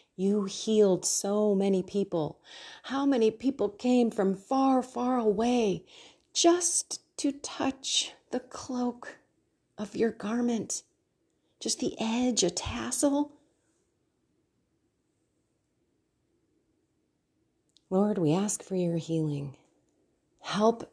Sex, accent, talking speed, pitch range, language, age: female, American, 95 wpm, 160-225 Hz, English, 40-59